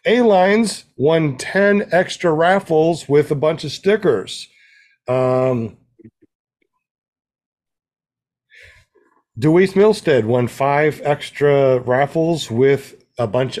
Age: 40-59